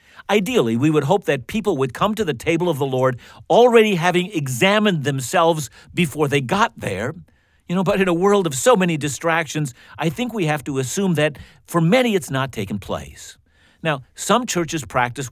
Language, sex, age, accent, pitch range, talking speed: English, male, 50-69, American, 125-175 Hz, 190 wpm